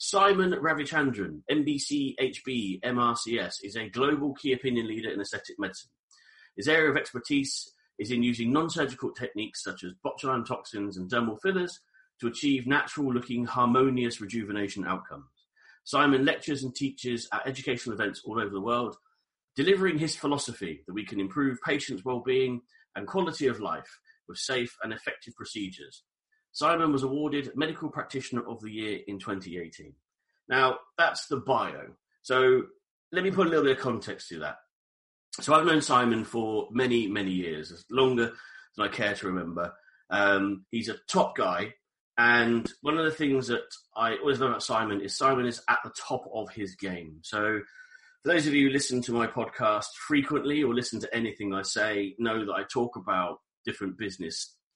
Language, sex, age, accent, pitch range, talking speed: English, male, 30-49, British, 110-145 Hz, 165 wpm